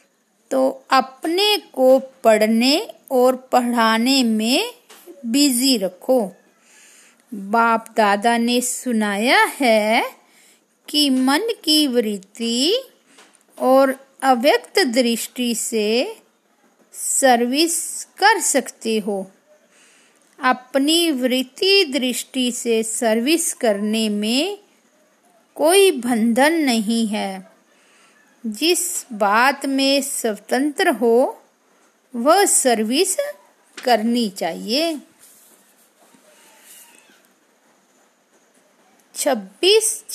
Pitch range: 230-300 Hz